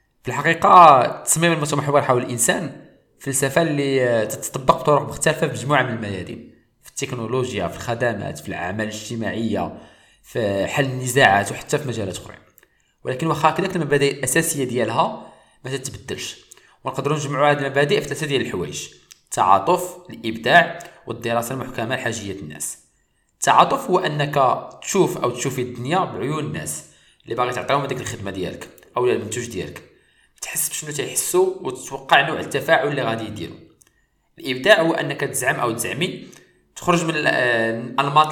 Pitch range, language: 115-155 Hz, Arabic